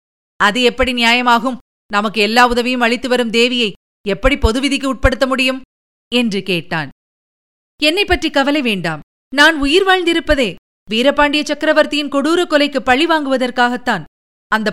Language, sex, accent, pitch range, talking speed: Tamil, female, native, 205-280 Hz, 110 wpm